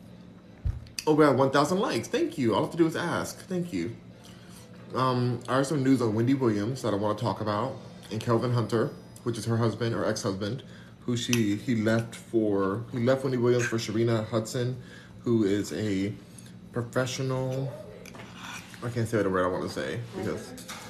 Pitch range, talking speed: 105-130 Hz, 185 wpm